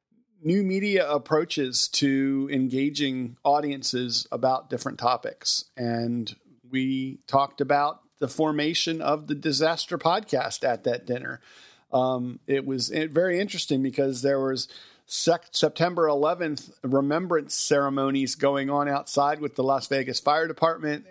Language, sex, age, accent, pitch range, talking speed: English, male, 50-69, American, 135-160 Hz, 120 wpm